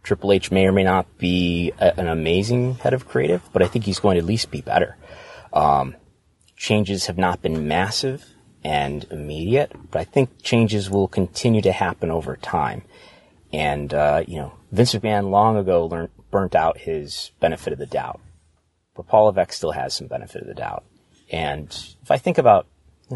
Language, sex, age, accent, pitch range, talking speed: English, male, 30-49, American, 80-105 Hz, 190 wpm